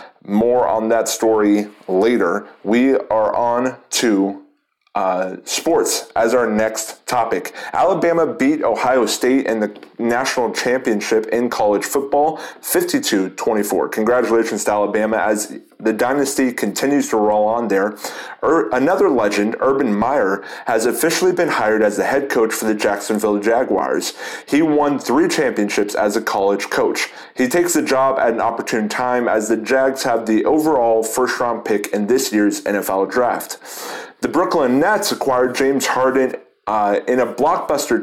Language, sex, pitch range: English, male, 110-145 Hz